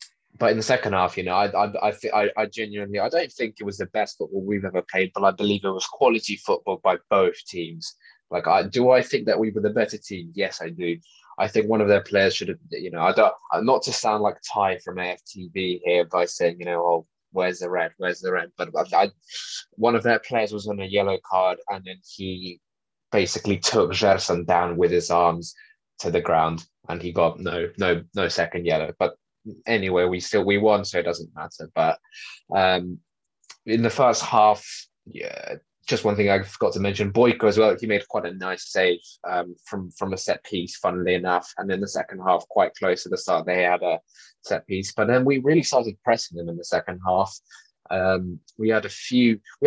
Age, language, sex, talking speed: 20-39, English, male, 220 wpm